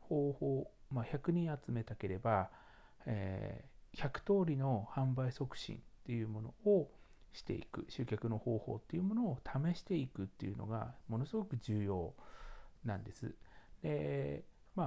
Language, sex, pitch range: Japanese, male, 110-150 Hz